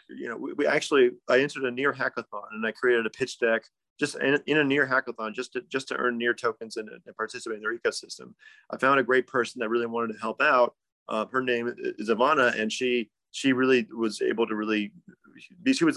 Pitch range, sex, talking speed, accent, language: 115-130 Hz, male, 235 wpm, American, English